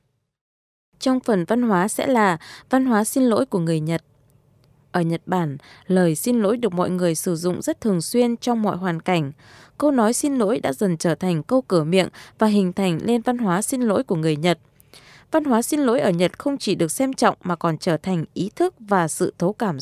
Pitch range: 175-250 Hz